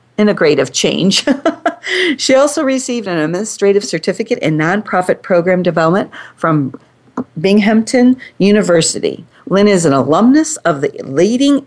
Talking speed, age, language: 115 wpm, 40-59, English